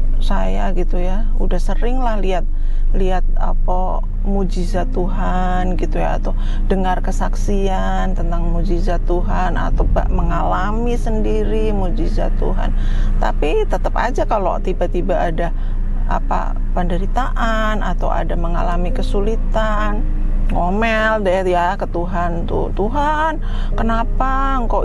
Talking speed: 110 wpm